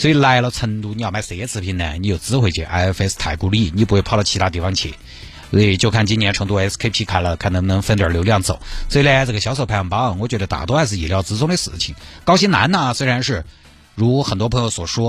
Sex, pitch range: male, 95-130 Hz